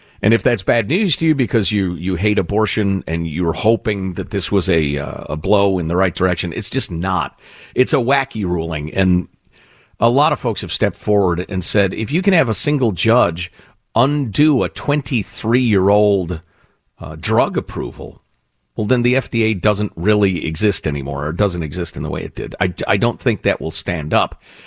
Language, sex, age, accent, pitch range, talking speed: English, male, 50-69, American, 90-130 Hz, 195 wpm